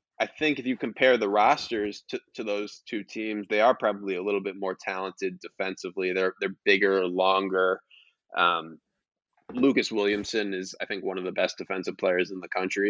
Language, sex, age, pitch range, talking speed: English, male, 20-39, 95-125 Hz, 185 wpm